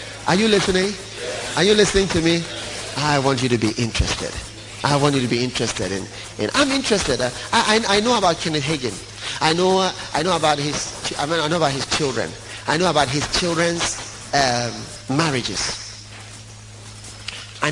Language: English